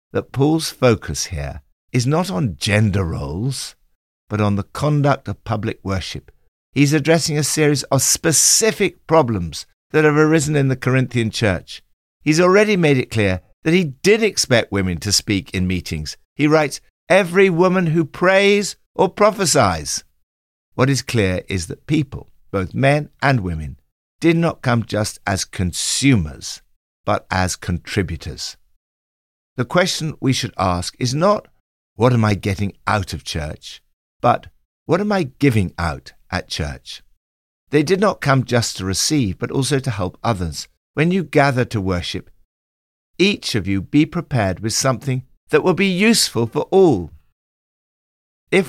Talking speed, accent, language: 155 wpm, British, English